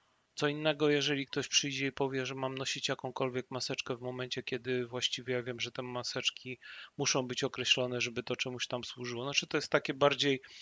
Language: Polish